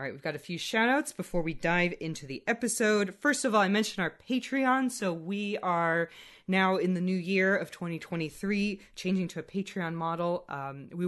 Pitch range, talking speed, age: 155-195 Hz, 205 wpm, 20-39